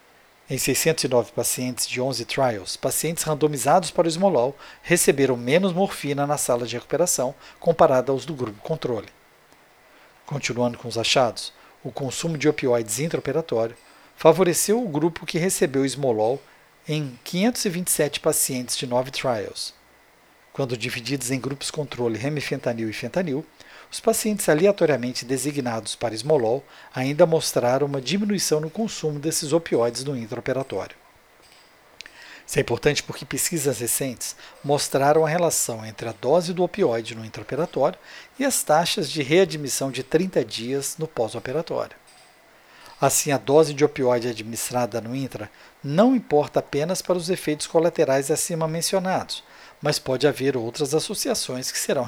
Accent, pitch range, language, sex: Brazilian, 125-165 Hz, Portuguese, male